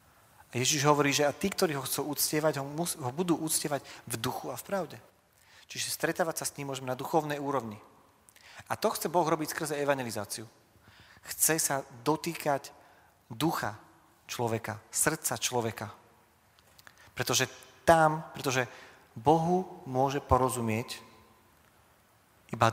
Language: Slovak